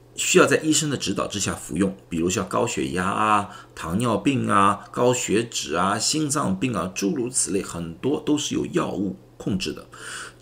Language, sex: Chinese, male